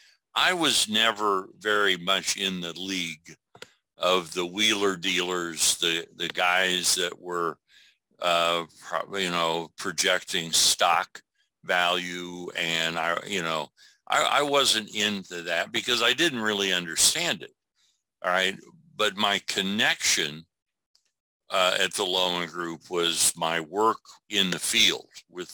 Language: English